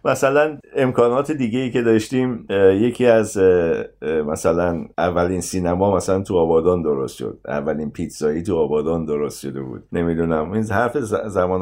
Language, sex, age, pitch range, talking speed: Persian, male, 50-69, 80-95 Hz, 150 wpm